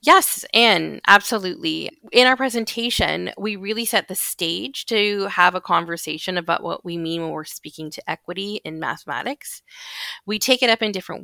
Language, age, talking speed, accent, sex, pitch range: English, 30-49, 170 wpm, American, female, 175-220 Hz